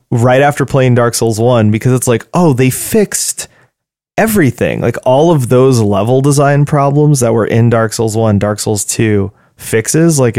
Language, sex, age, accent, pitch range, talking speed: English, male, 20-39, American, 110-130 Hz, 180 wpm